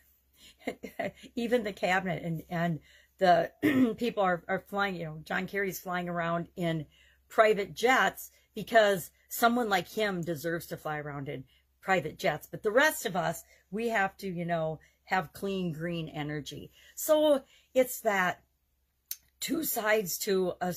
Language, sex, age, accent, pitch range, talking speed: English, female, 50-69, American, 170-225 Hz, 145 wpm